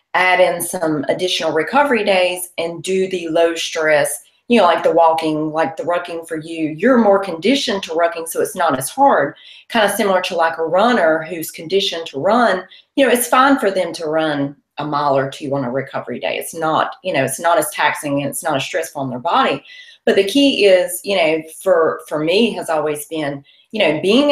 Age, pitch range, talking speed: 30-49, 150-195 Hz, 220 wpm